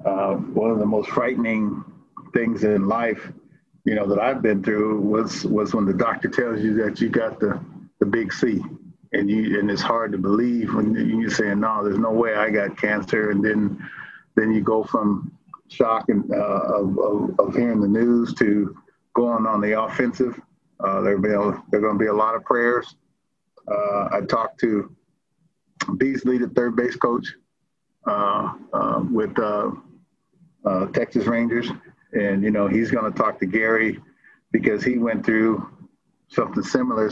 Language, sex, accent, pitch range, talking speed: English, male, American, 105-115 Hz, 175 wpm